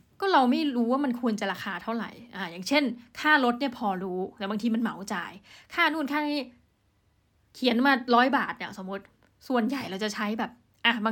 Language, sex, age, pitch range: Thai, female, 20-39, 205-250 Hz